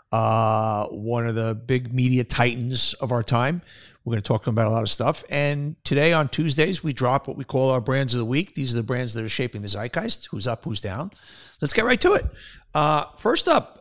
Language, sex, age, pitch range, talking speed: English, male, 50-69, 115-150 Hz, 245 wpm